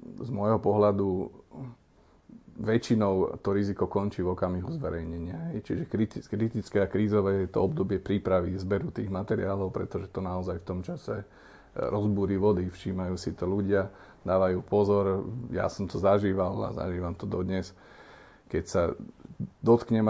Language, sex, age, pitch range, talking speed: Slovak, male, 40-59, 90-105 Hz, 135 wpm